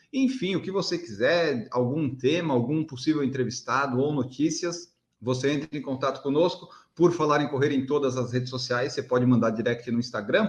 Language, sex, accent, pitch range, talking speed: Portuguese, male, Brazilian, 135-180 Hz, 185 wpm